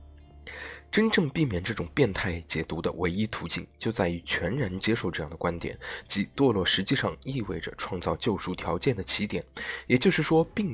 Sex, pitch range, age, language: male, 90-125 Hz, 20-39, Chinese